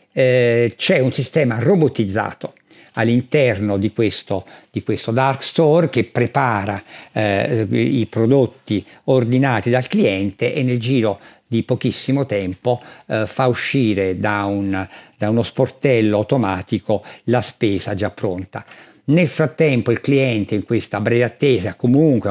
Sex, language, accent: male, Italian, native